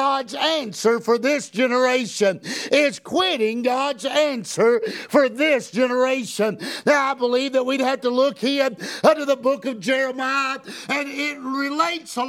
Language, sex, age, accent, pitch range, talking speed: English, male, 50-69, American, 260-295 Hz, 145 wpm